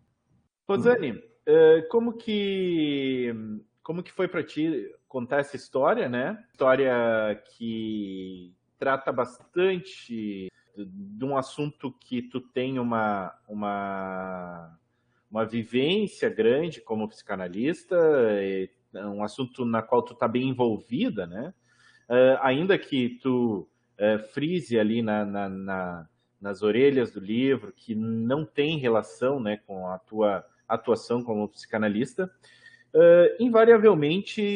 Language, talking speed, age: Portuguese, 110 wpm, 30-49